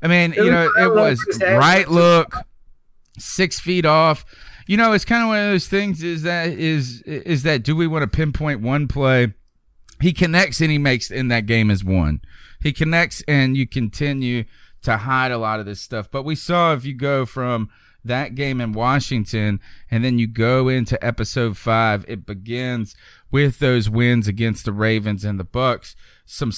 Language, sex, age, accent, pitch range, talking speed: English, male, 30-49, American, 110-145 Hz, 190 wpm